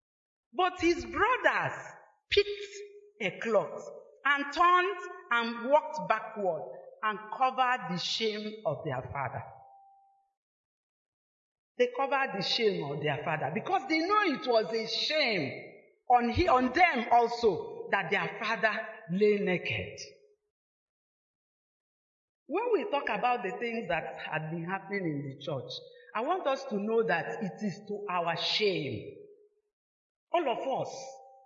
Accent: Nigerian